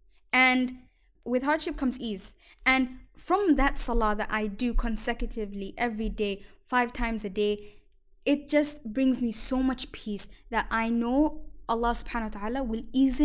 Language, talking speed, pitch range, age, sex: English, 160 wpm, 225-265 Hz, 10-29, female